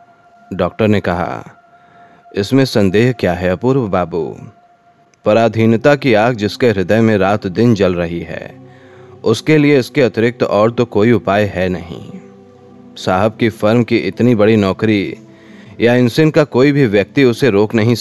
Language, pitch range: Hindi, 95-125 Hz